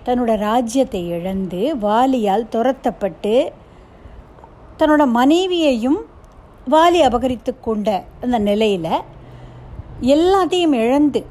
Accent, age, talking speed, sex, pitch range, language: native, 60-79, 75 wpm, female, 205-305 Hz, Tamil